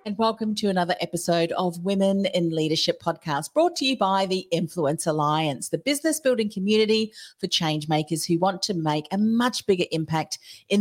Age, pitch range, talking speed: 40-59, 160-220 Hz, 185 wpm